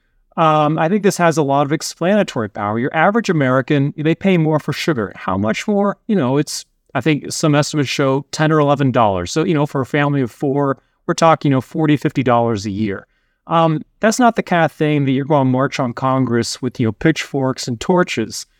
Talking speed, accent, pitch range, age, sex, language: 225 wpm, American, 125-170 Hz, 30-49, male, English